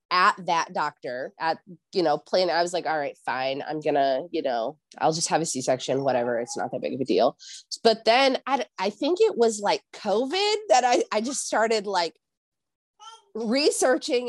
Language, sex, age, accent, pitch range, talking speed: English, female, 20-39, American, 175-250 Hz, 195 wpm